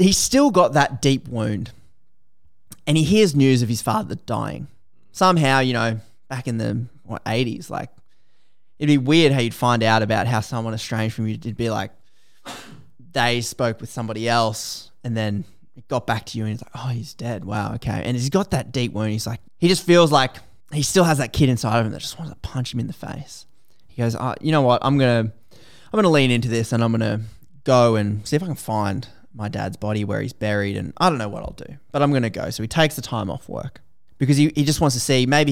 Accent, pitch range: Australian, 110-140 Hz